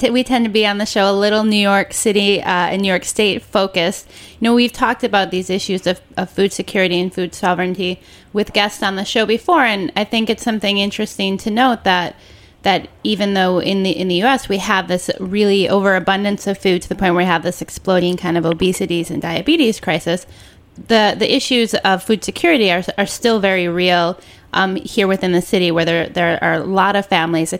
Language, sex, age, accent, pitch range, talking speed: English, female, 20-39, American, 180-215 Hz, 220 wpm